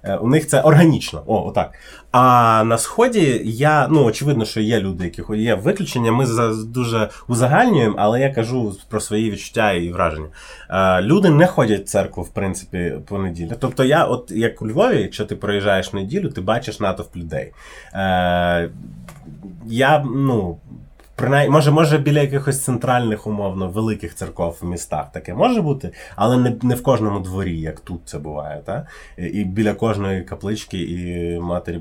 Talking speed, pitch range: 160 wpm, 90-125 Hz